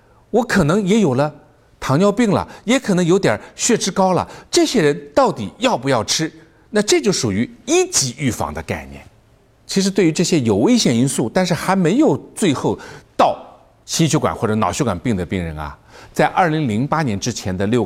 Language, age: Chinese, 60-79